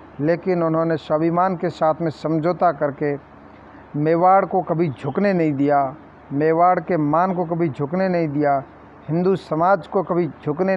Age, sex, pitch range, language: 50-69, male, 155-185 Hz, Hindi